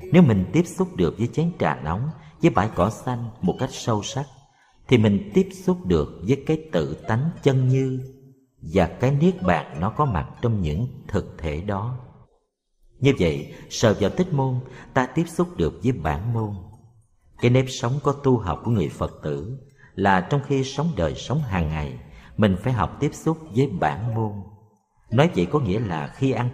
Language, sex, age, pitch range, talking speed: Vietnamese, male, 50-69, 100-140 Hz, 195 wpm